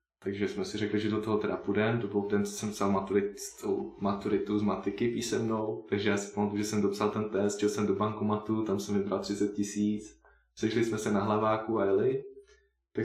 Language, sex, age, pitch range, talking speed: Czech, male, 20-39, 100-110 Hz, 195 wpm